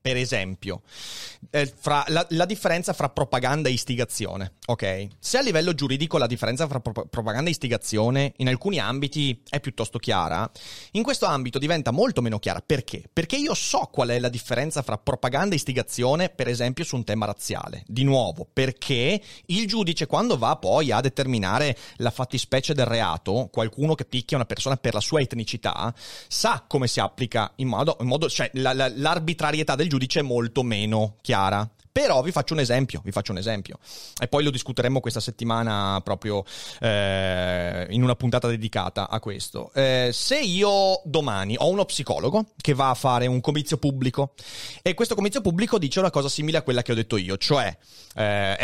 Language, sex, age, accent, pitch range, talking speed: Italian, male, 30-49, native, 110-150 Hz, 180 wpm